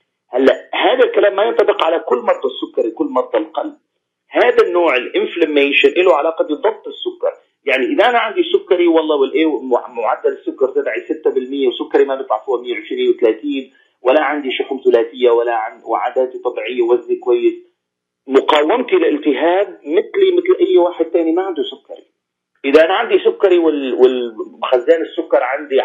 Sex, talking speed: male, 140 wpm